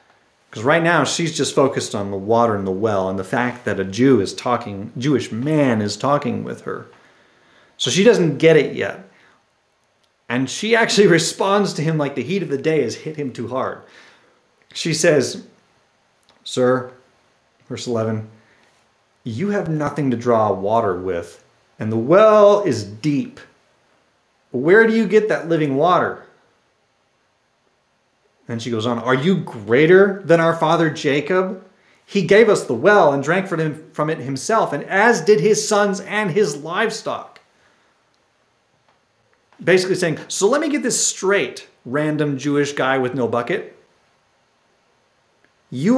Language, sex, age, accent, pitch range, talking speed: English, male, 30-49, American, 125-205 Hz, 155 wpm